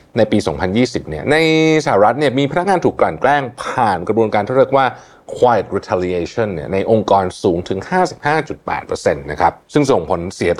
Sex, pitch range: male, 100-140 Hz